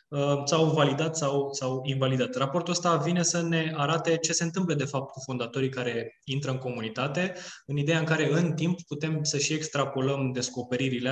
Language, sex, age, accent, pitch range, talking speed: Romanian, male, 20-39, native, 120-140 Hz, 185 wpm